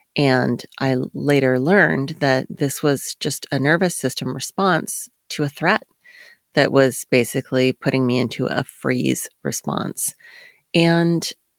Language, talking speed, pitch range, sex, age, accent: English, 130 wpm, 125-150 Hz, female, 30-49, American